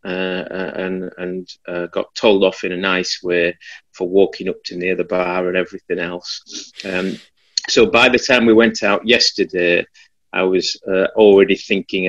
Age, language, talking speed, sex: 30-49, English, 175 wpm, male